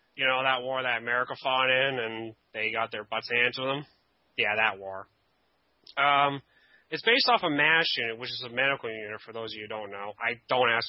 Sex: male